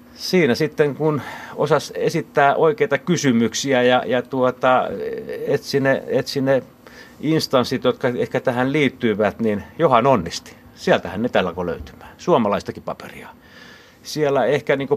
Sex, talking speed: male, 130 wpm